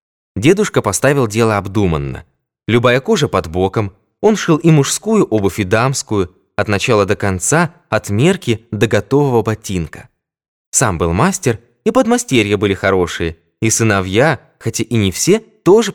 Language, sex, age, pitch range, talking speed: Russian, male, 20-39, 105-150 Hz, 145 wpm